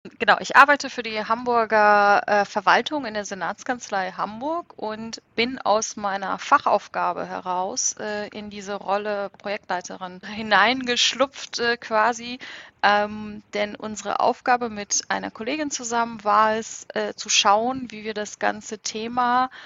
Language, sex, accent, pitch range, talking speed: German, female, German, 200-230 Hz, 135 wpm